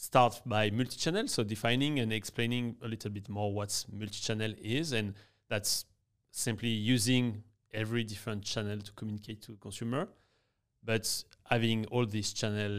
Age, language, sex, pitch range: 30-49, English, male, 100-115 Hz